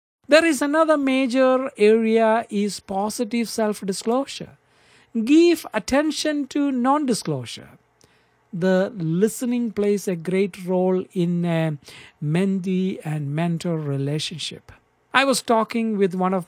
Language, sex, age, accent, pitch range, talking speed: English, male, 60-79, Indian, 170-250 Hz, 110 wpm